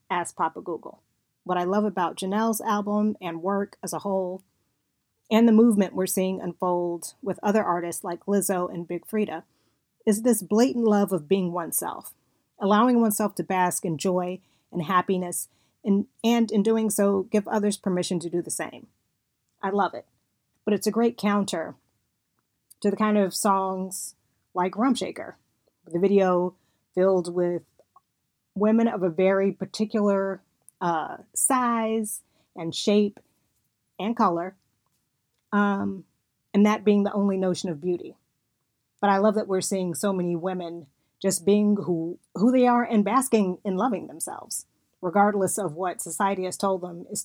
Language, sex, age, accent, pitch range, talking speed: English, female, 30-49, American, 175-205 Hz, 155 wpm